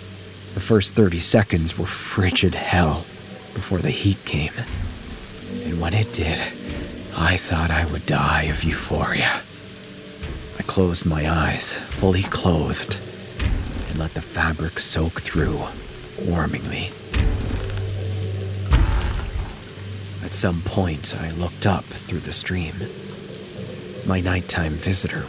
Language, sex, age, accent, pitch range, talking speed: English, male, 40-59, American, 80-115 Hz, 115 wpm